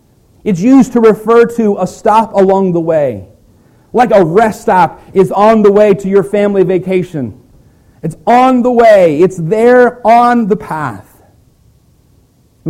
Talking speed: 150 wpm